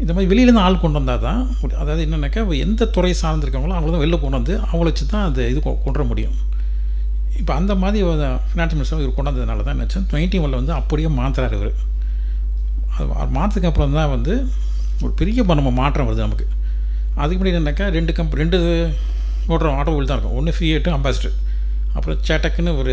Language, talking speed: Tamil, 165 wpm